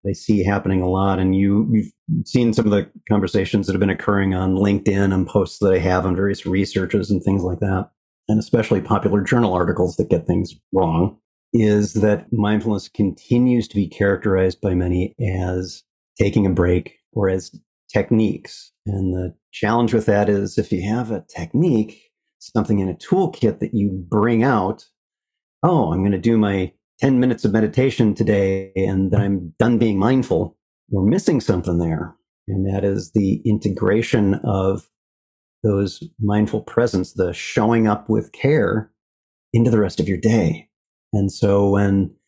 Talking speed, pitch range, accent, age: 165 wpm, 95-110 Hz, American, 40-59